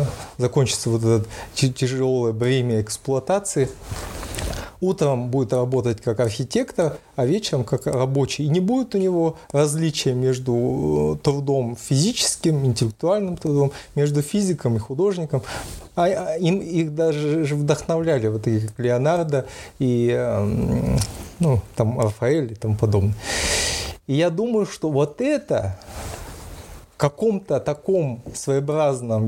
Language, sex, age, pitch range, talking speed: Russian, male, 30-49, 120-165 Hz, 110 wpm